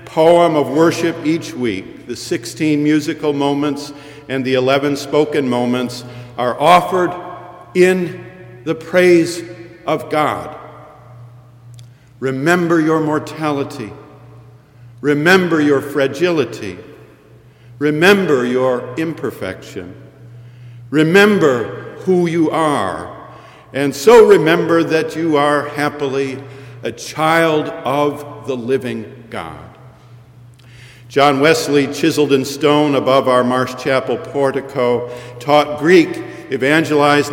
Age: 50-69